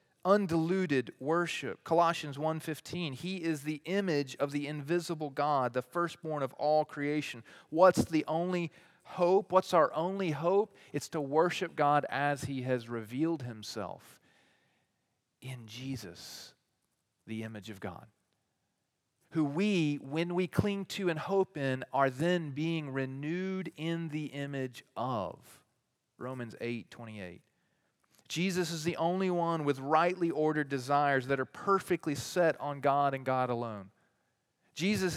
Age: 40-59